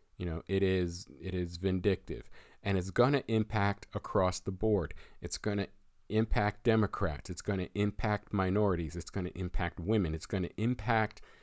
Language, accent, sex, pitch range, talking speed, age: English, American, male, 90-105 Hz, 180 wpm, 50-69